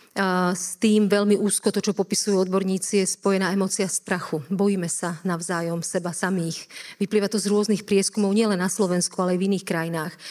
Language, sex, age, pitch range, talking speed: Slovak, female, 40-59, 180-200 Hz, 175 wpm